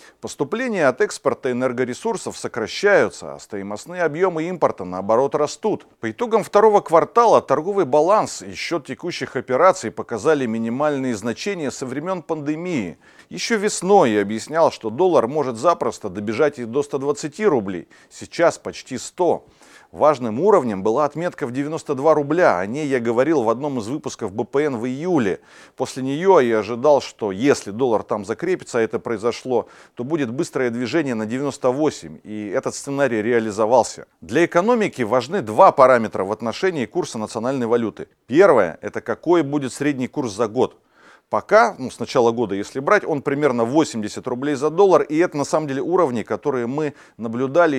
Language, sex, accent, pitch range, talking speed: Russian, male, native, 120-165 Hz, 155 wpm